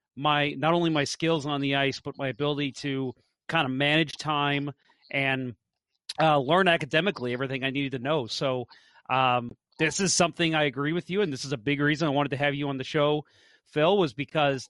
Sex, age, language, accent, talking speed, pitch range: male, 30-49, English, American, 210 wpm, 135-160 Hz